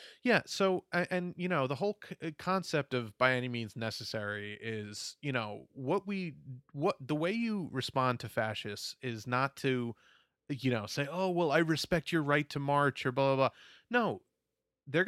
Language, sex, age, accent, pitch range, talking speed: English, male, 30-49, American, 120-170 Hz, 180 wpm